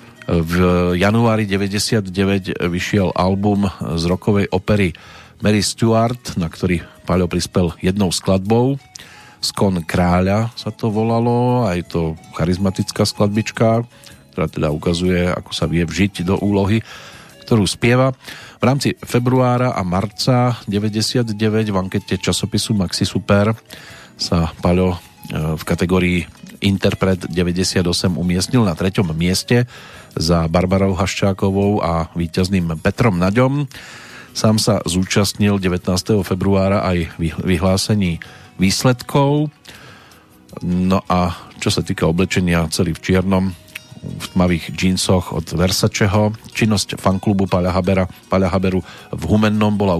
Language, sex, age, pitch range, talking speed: Slovak, male, 40-59, 90-110 Hz, 110 wpm